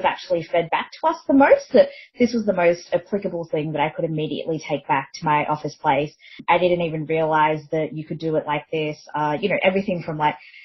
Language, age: English, 20-39